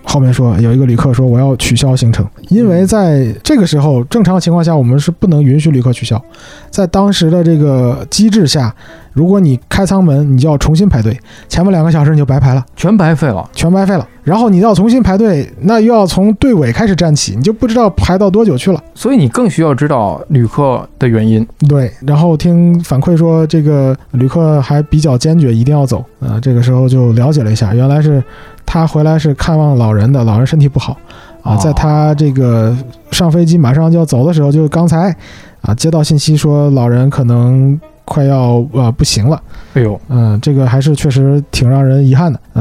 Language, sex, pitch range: Chinese, male, 130-170 Hz